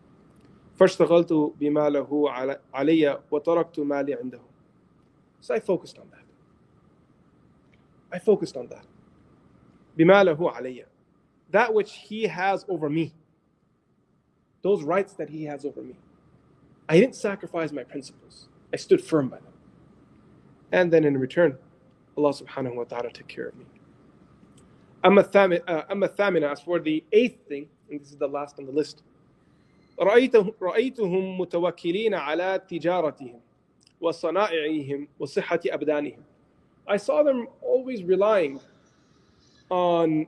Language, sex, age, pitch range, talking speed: English, male, 20-39, 145-195 Hz, 105 wpm